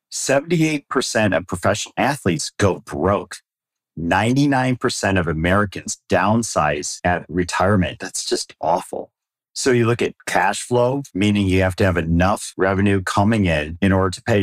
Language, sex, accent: English, male, American